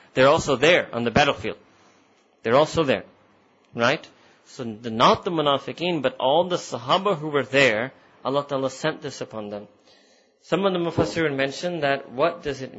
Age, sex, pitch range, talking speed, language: 30-49, male, 120-145 Hz, 175 wpm, English